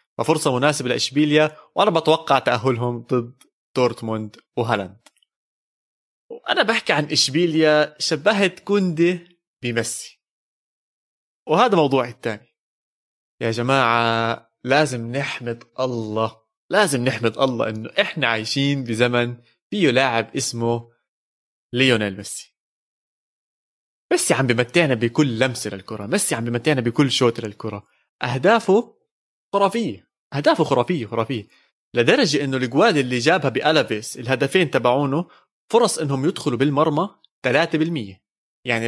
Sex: male